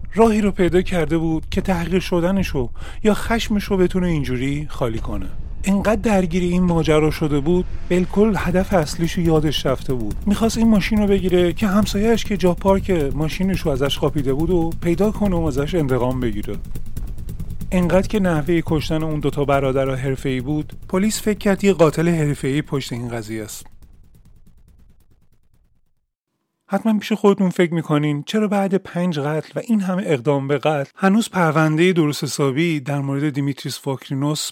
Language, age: Persian, 30-49